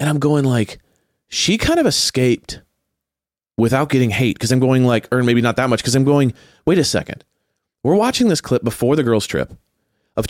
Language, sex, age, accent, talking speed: English, male, 30-49, American, 205 wpm